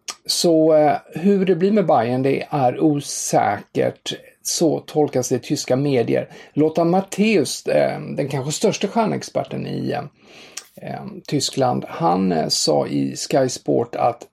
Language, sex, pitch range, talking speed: English, male, 125-160 Hz, 140 wpm